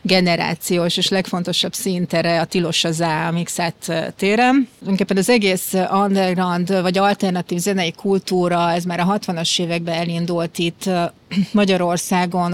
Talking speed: 120 wpm